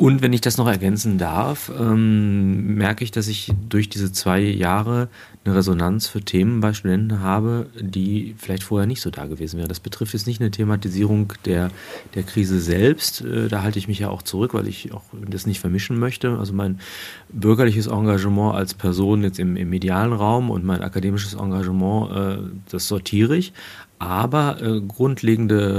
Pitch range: 95-110 Hz